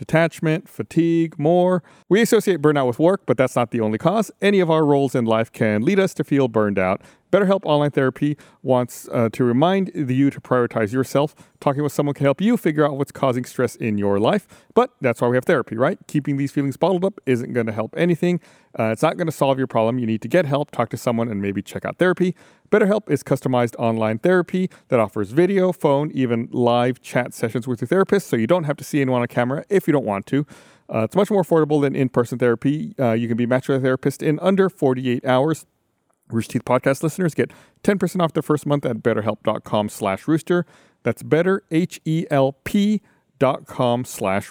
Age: 40-59